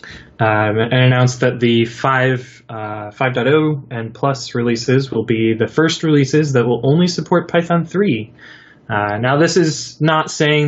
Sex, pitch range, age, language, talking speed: male, 115-140 Hz, 10-29, English, 150 wpm